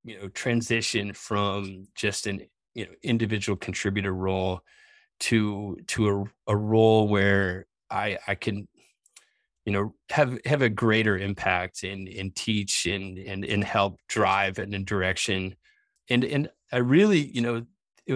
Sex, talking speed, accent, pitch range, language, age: male, 150 wpm, American, 95-115 Hz, English, 20-39